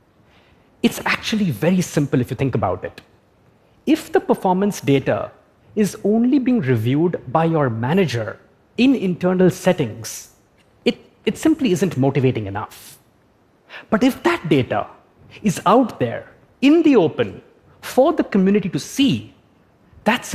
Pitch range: 160-240 Hz